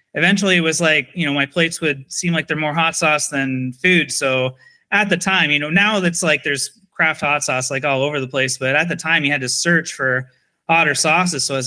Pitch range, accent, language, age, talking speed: 135-175 Hz, American, English, 30-49, 250 wpm